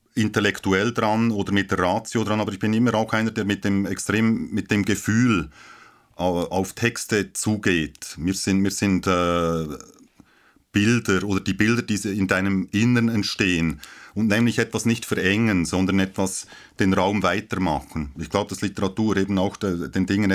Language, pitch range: German, 95-110 Hz